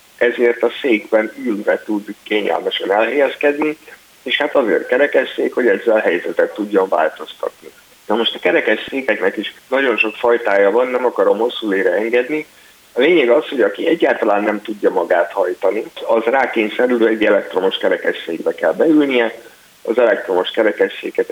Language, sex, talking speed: Hungarian, male, 145 wpm